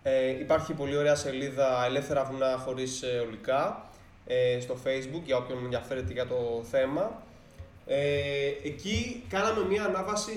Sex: male